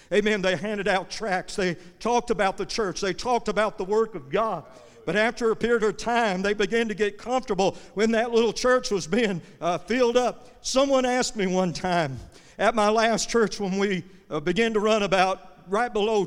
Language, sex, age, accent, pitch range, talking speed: English, male, 50-69, American, 195-255 Hz, 205 wpm